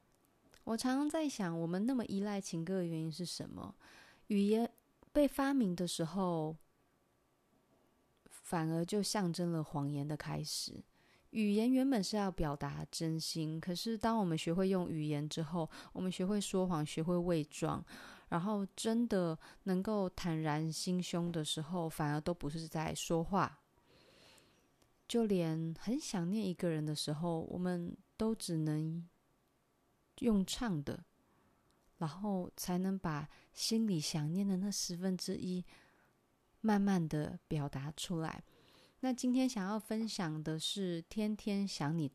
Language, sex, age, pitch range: Chinese, female, 30-49, 160-205 Hz